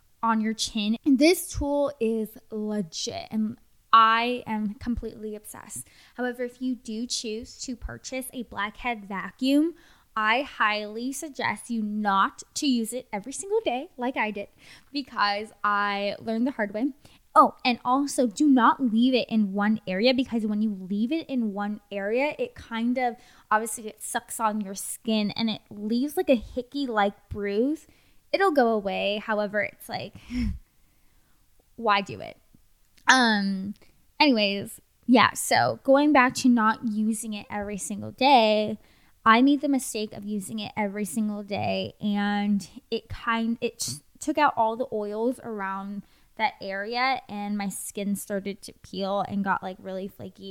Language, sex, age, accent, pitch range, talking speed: English, female, 10-29, American, 205-245 Hz, 160 wpm